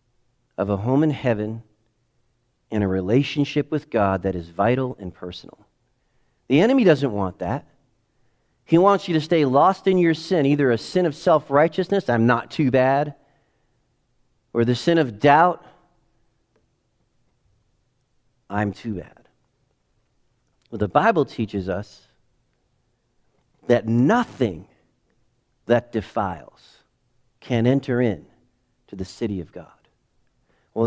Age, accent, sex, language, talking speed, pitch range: 40-59, American, male, English, 125 wpm, 120-165 Hz